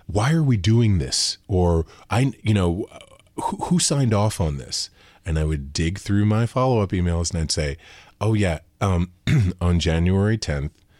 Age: 30-49